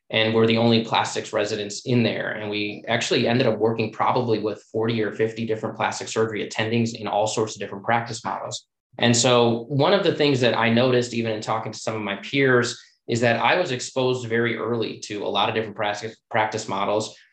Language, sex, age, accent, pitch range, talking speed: English, male, 20-39, American, 110-125 Hz, 215 wpm